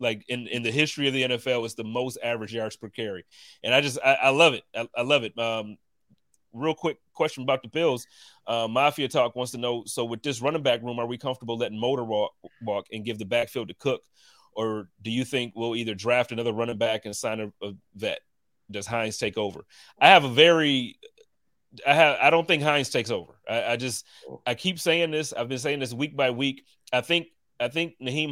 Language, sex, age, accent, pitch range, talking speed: English, male, 30-49, American, 115-140 Hz, 225 wpm